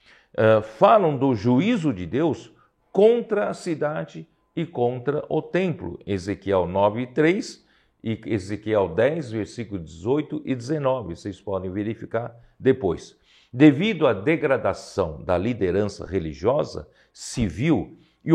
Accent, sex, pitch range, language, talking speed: Brazilian, male, 105-155 Hz, Portuguese, 115 wpm